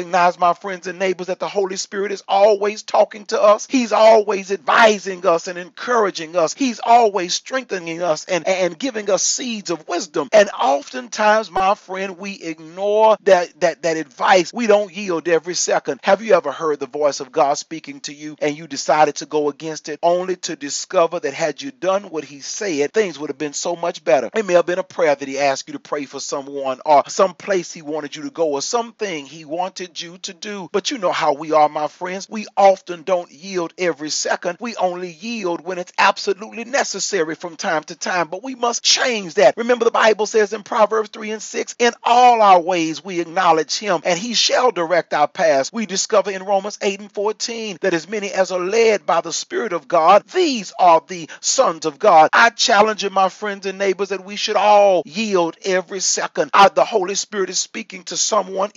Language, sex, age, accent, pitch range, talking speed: English, male, 40-59, American, 170-210 Hz, 215 wpm